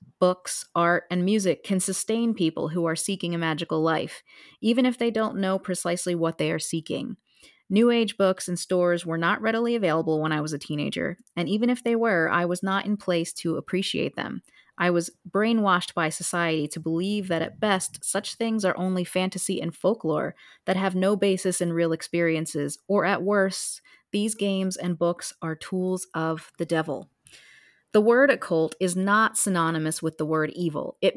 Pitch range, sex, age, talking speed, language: 165-200 Hz, female, 30-49, 185 wpm, English